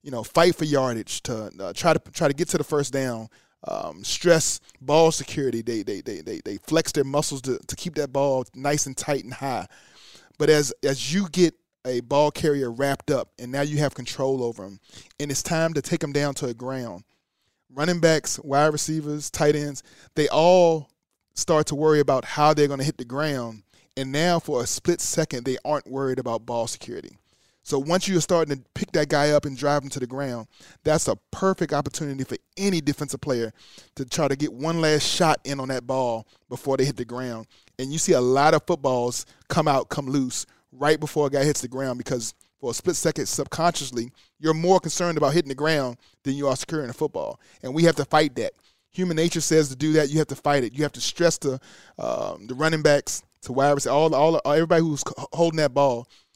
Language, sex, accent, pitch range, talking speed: English, male, American, 130-155 Hz, 220 wpm